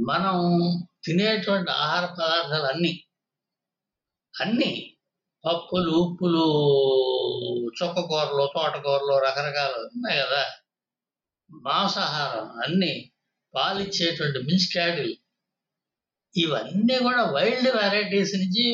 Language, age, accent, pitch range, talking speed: Telugu, 60-79, native, 155-195 Hz, 70 wpm